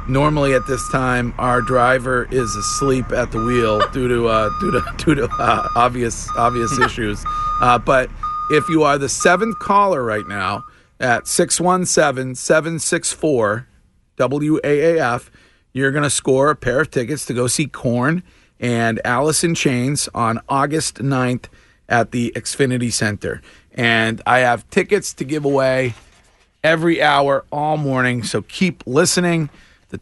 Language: English